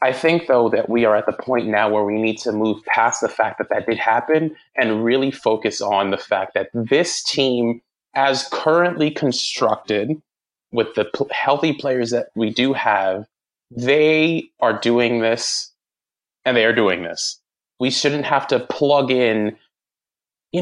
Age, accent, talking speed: 20-39, American, 170 wpm